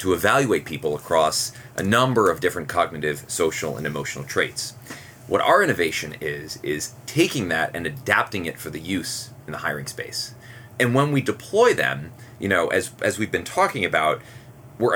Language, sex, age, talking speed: English, male, 30-49, 175 wpm